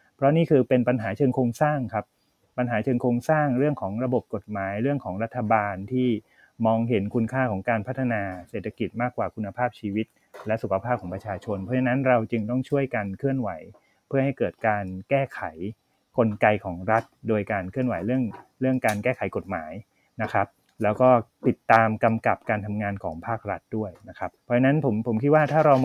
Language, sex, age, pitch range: Thai, male, 30-49, 110-135 Hz